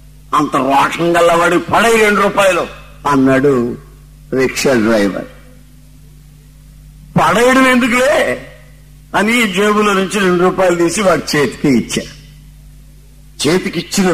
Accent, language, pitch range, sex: native, Telugu, 145-215 Hz, male